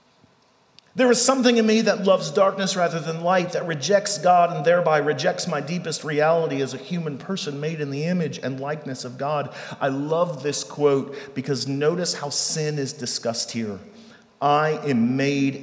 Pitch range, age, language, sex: 115-175 Hz, 40-59, English, male